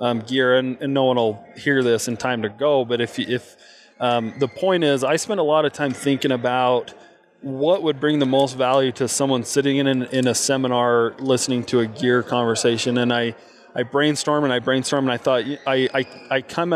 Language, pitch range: English, 125-145 Hz